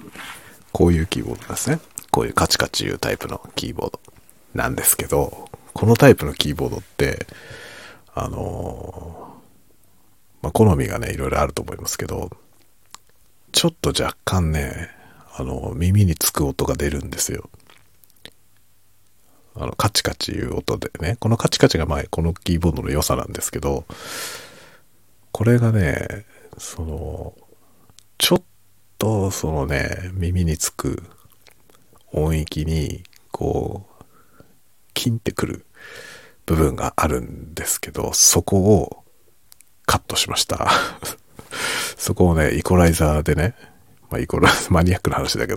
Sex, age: male, 50-69